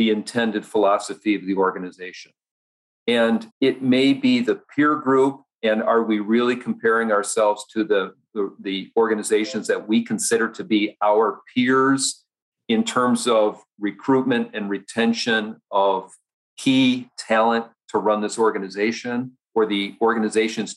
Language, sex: English, male